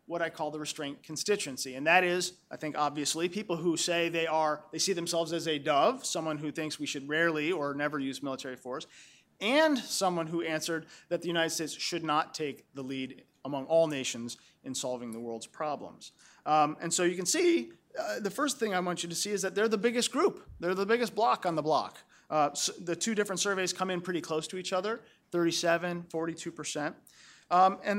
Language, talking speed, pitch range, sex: English, 205 wpm, 150-195 Hz, male